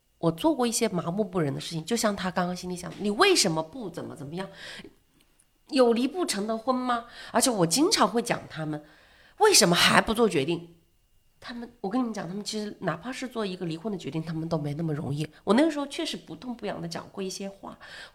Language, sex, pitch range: Chinese, female, 165-230 Hz